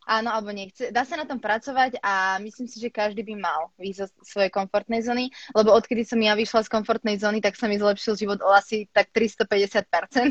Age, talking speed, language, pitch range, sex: 20-39, 210 wpm, Slovak, 210-255 Hz, female